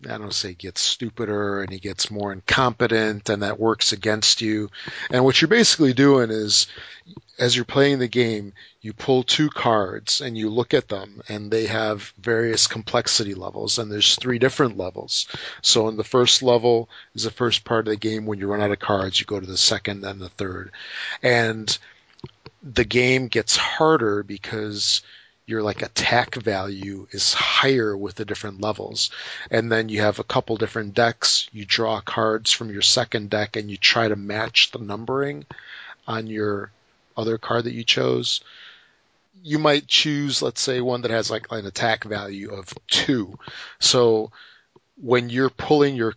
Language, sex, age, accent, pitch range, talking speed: English, male, 40-59, American, 105-120 Hz, 175 wpm